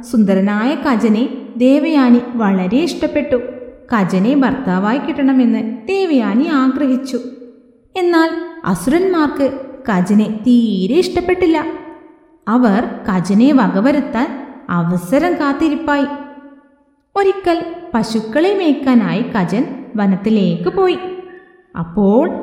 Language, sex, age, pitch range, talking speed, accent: Malayalam, female, 20-39, 235-295 Hz, 70 wpm, native